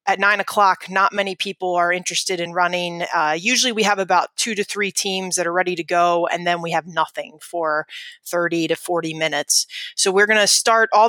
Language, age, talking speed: English, 20-39, 215 wpm